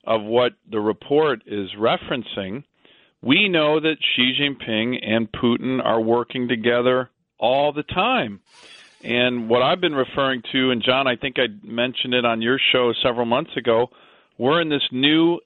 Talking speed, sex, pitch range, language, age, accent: 165 wpm, male, 120-155 Hz, English, 40-59, American